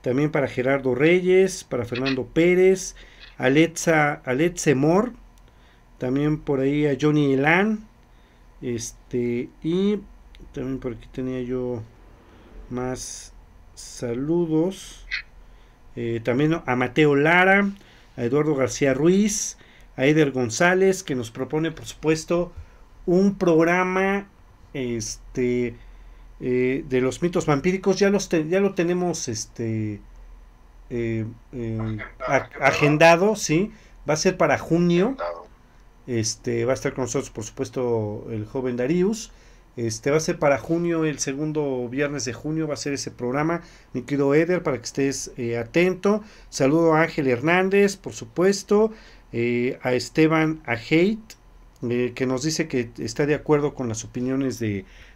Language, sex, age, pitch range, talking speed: Spanish, male, 40-59, 120-170 Hz, 140 wpm